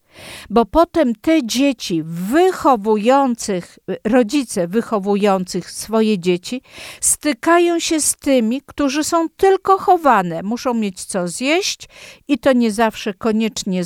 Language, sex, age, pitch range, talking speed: Polish, female, 50-69, 200-275 Hz, 115 wpm